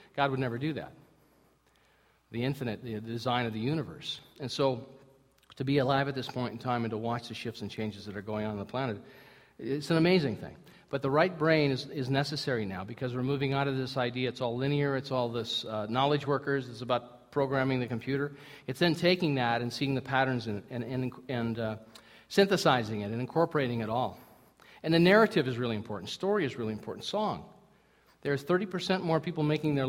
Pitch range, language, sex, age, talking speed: 120-150 Hz, English, male, 50-69, 215 wpm